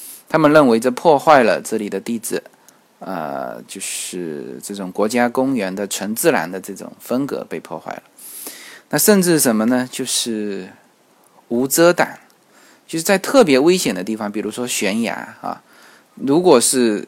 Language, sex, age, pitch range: Chinese, male, 20-39, 105-135 Hz